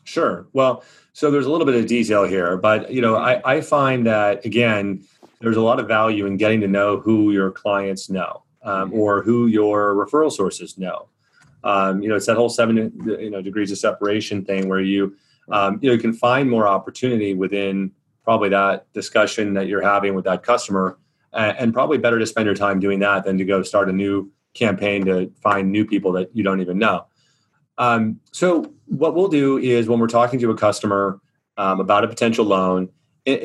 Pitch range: 100-115 Hz